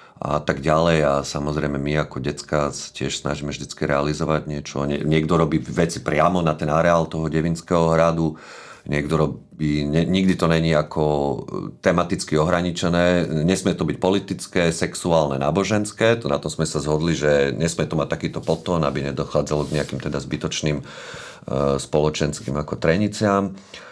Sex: male